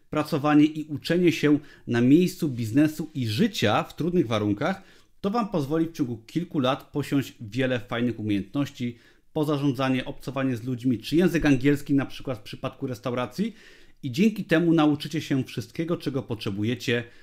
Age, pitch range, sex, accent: 30-49, 115-155 Hz, male, native